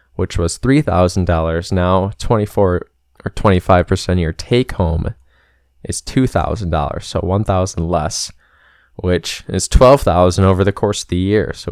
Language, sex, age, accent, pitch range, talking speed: English, male, 20-39, American, 85-100 Hz, 135 wpm